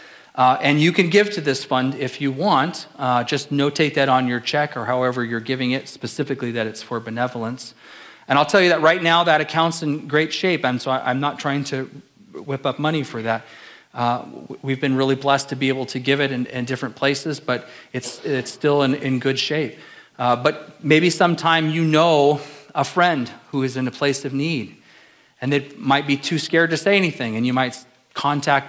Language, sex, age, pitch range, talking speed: English, male, 40-59, 125-150 Hz, 215 wpm